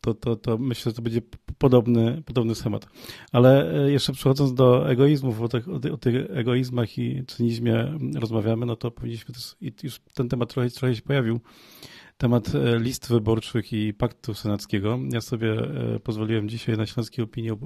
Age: 40-59